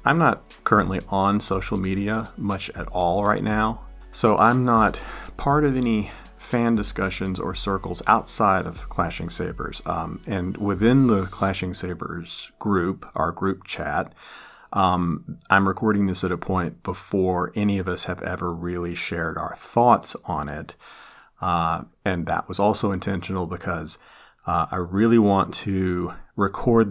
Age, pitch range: 40-59, 90-105 Hz